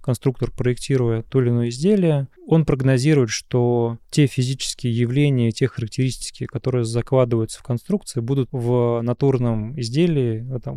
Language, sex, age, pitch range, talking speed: Russian, male, 20-39, 120-135 Hz, 130 wpm